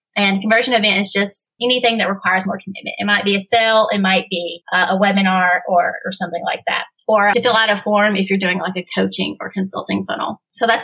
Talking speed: 240 wpm